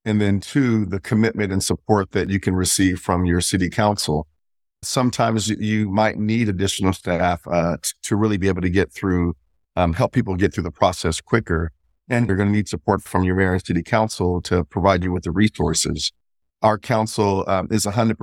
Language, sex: English, male